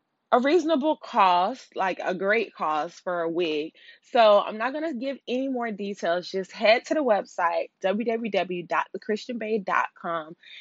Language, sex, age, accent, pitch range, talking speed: English, female, 20-39, American, 180-225 Hz, 140 wpm